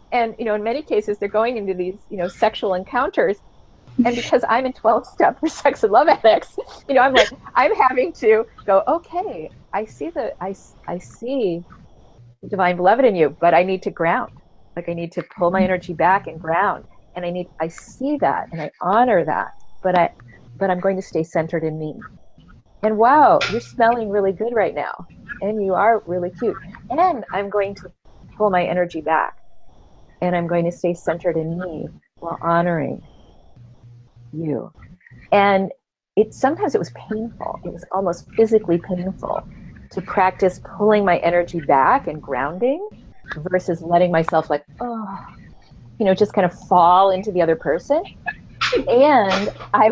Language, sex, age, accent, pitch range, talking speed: English, female, 40-59, American, 175-230 Hz, 175 wpm